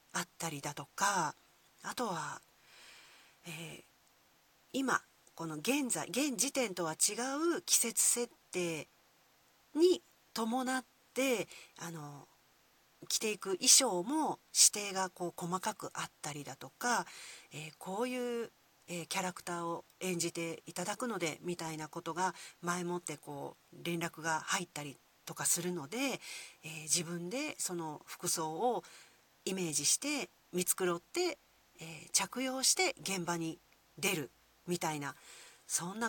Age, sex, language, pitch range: 40-59, female, Japanese, 160-225 Hz